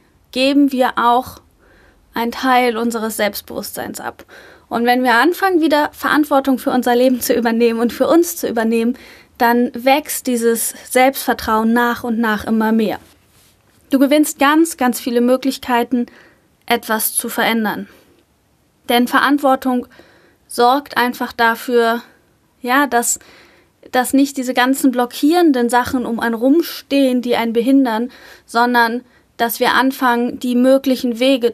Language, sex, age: German, female, 20-39